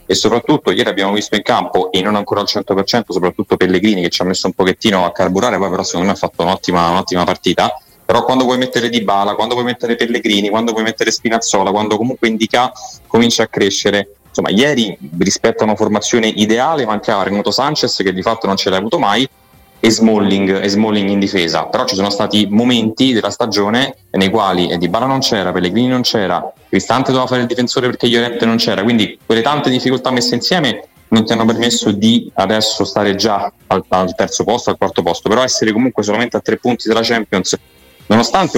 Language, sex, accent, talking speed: Italian, male, native, 200 wpm